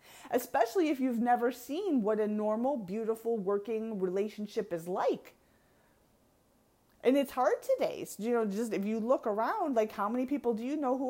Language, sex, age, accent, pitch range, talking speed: English, female, 30-49, American, 200-260 Hz, 175 wpm